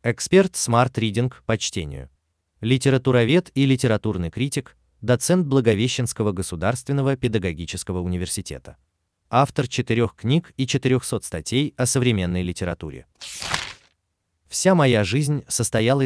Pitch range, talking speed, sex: 85-130 Hz, 95 wpm, male